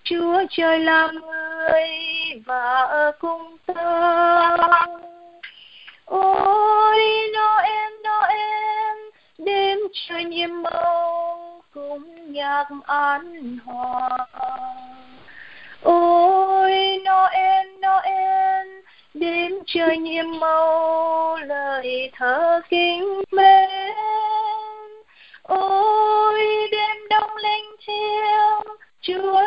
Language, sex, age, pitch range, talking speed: Vietnamese, female, 20-39, 290-385 Hz, 80 wpm